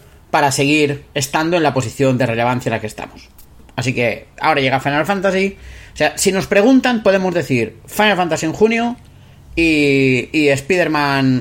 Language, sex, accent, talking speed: Spanish, male, Spanish, 170 wpm